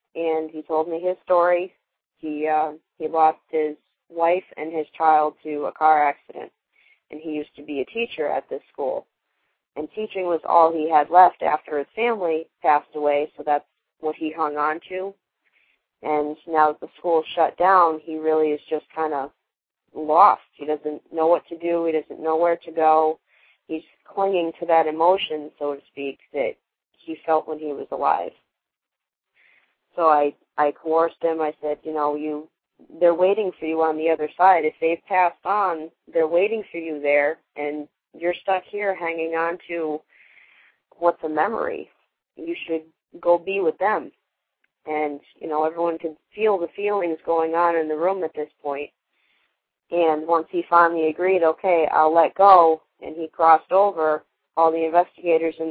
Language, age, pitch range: English, 30-49, 155-170 Hz